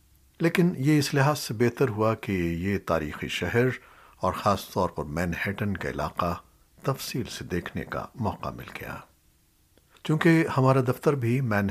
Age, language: 60-79, Urdu